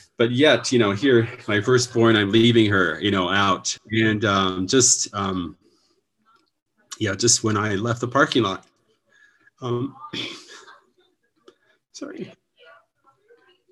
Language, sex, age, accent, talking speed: English, male, 30-49, American, 120 wpm